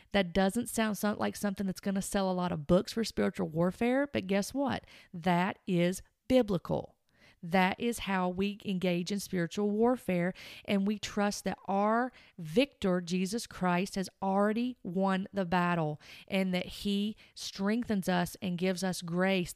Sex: female